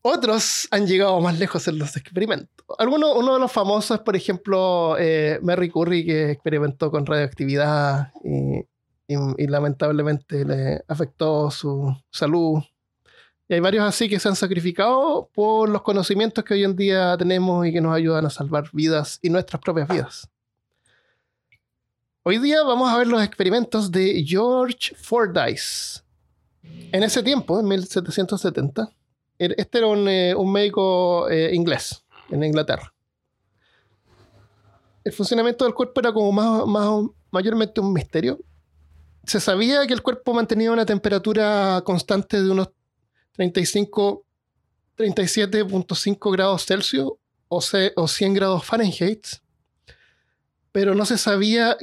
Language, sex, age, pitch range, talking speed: Spanish, male, 30-49, 160-210 Hz, 135 wpm